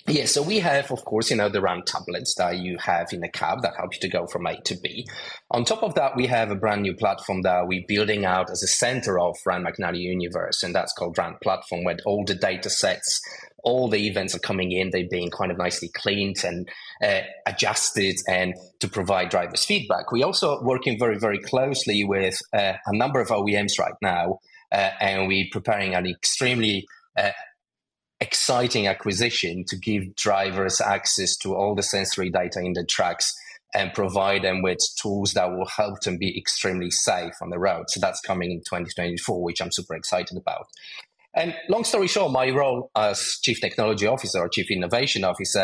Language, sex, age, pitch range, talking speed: English, male, 30-49, 90-115 Hz, 200 wpm